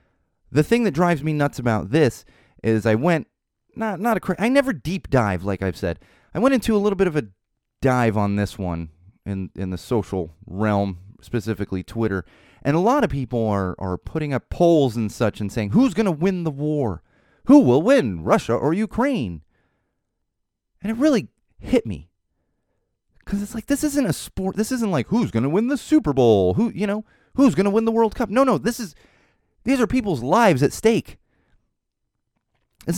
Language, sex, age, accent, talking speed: English, male, 30-49, American, 195 wpm